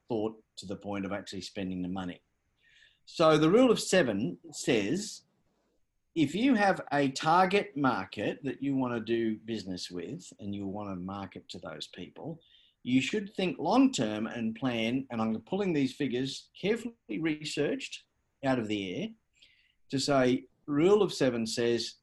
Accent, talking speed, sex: Australian, 160 wpm, male